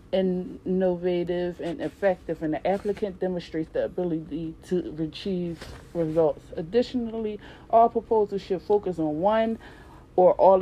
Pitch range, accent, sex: 160-190 Hz, American, female